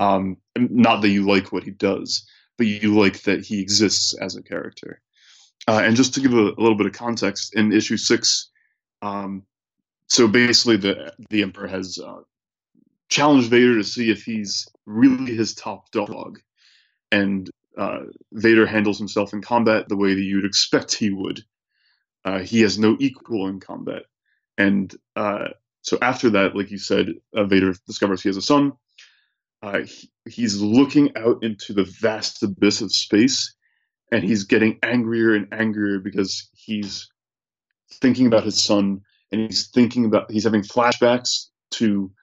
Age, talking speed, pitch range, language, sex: 20-39, 165 wpm, 100-115 Hz, English, male